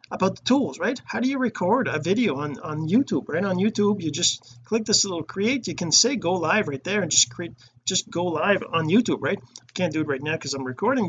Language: English